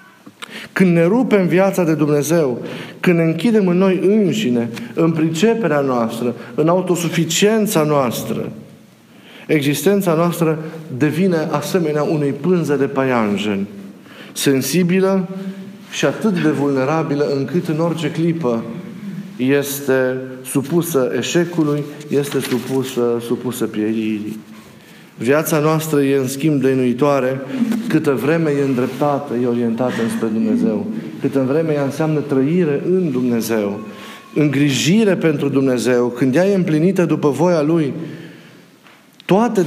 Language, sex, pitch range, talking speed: Romanian, male, 135-185 Hz, 110 wpm